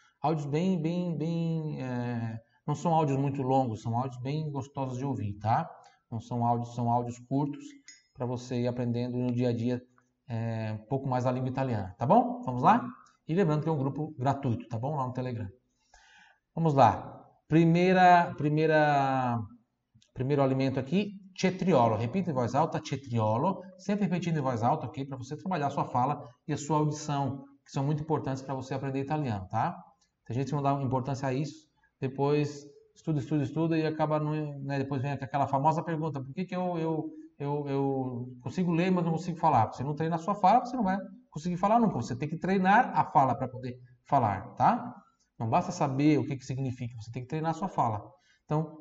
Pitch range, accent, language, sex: 125-160 Hz, Brazilian, Italian, male